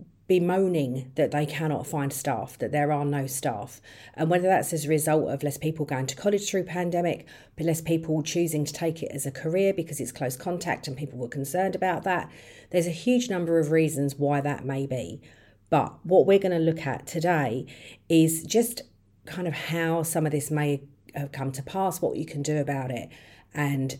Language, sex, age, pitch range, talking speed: English, female, 40-59, 140-165 Hz, 210 wpm